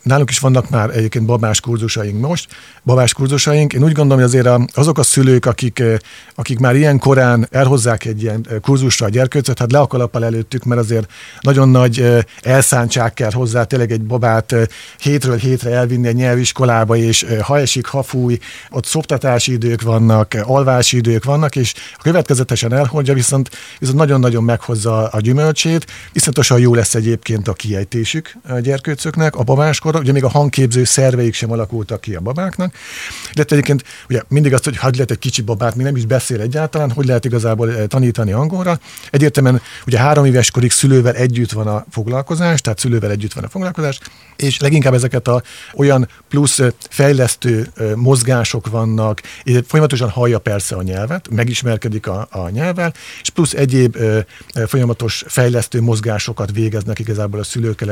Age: 50-69